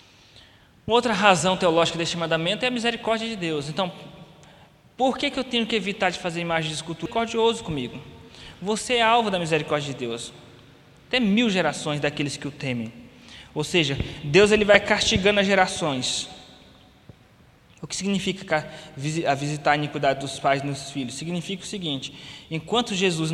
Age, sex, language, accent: 20-39, male, Portuguese, Brazilian